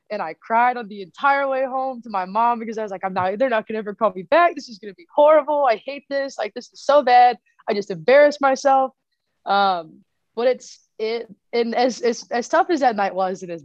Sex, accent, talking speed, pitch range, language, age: female, American, 245 wpm, 175-255 Hz, English, 20-39